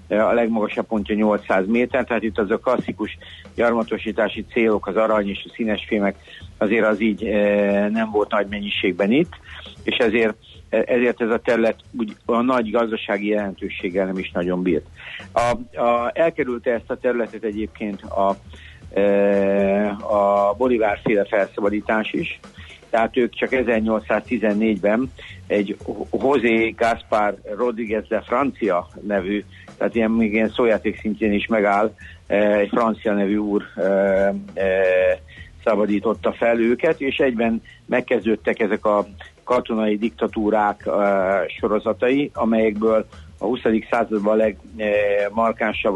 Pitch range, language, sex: 100-115 Hz, Hungarian, male